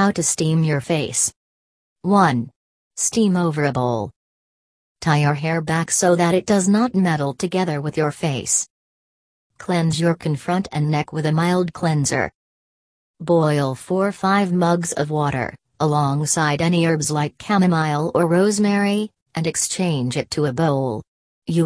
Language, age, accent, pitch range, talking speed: English, 40-59, American, 145-180 Hz, 145 wpm